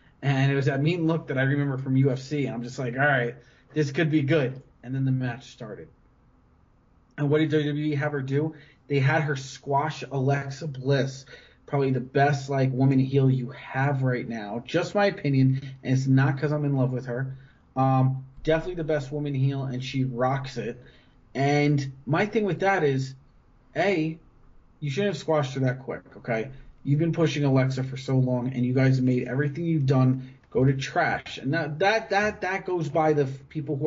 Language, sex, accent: English, male, American